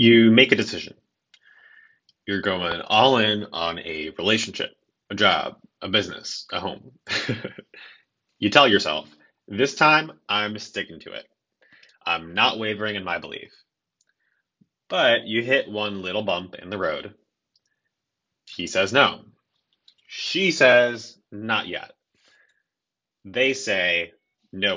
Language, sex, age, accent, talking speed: English, male, 30-49, American, 125 wpm